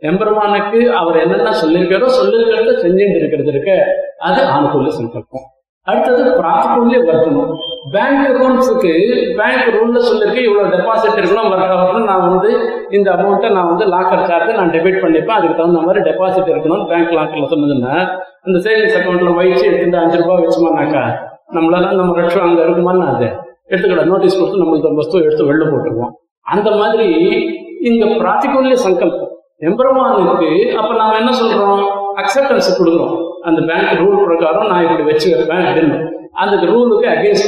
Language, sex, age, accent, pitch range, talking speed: Tamil, male, 50-69, native, 165-235 Hz, 140 wpm